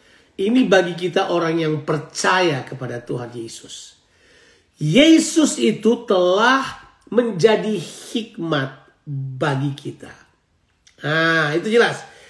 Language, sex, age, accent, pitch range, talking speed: Indonesian, male, 40-59, native, 165-225 Hz, 95 wpm